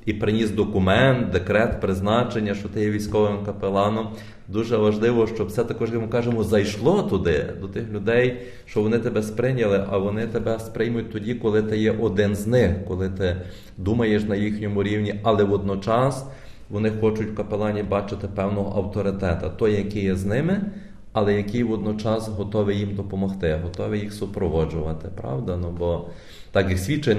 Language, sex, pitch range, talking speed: Ukrainian, male, 95-110 Hz, 160 wpm